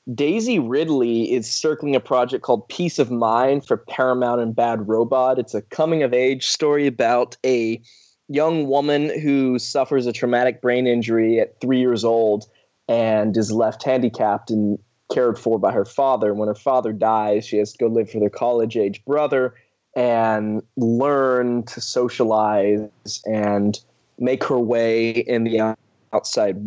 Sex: male